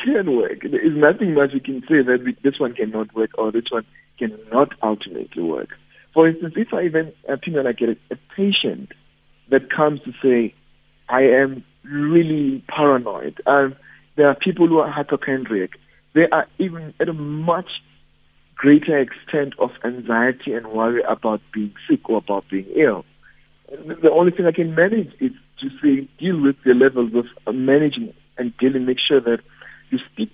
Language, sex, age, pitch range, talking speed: English, male, 60-79, 120-165 Hz, 170 wpm